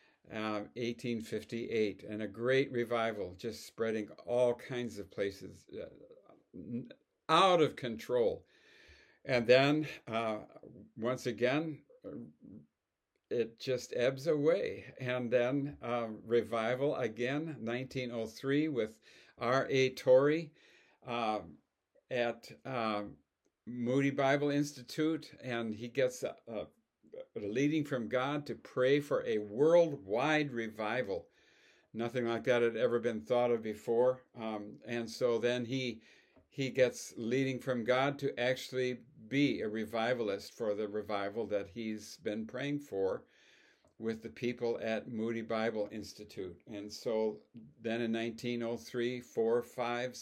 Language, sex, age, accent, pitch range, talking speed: English, male, 60-79, American, 115-140 Hz, 120 wpm